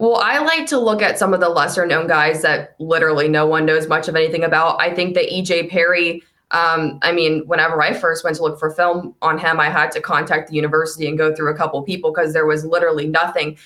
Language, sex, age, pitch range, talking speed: English, female, 20-39, 160-185 Hz, 245 wpm